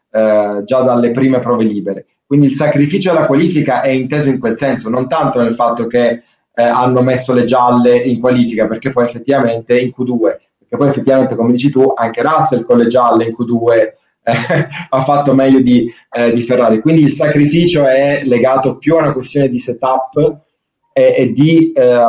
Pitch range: 120-150 Hz